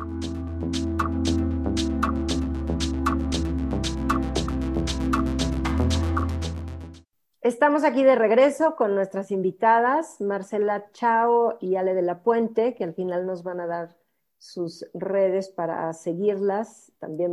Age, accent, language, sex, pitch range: 40-59, Mexican, Spanish, female, 170-210 Hz